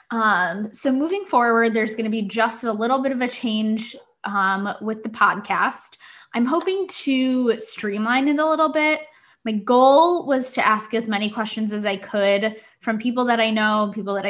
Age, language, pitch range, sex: 10-29, English, 210-260 Hz, female